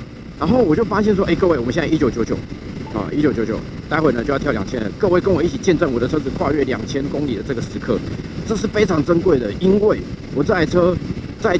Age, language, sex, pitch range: 50-69, Chinese, male, 120-180 Hz